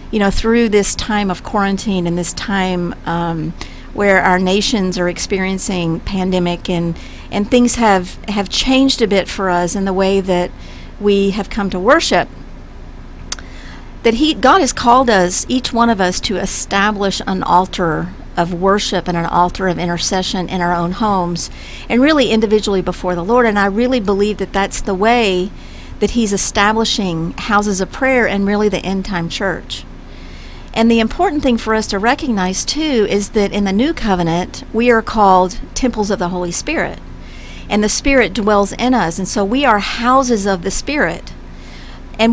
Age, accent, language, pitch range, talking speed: 50-69, American, English, 185-230 Hz, 175 wpm